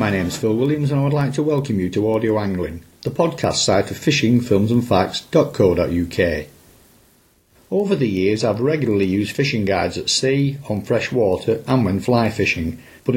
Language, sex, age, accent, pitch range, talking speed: English, male, 50-69, British, 105-140 Hz, 170 wpm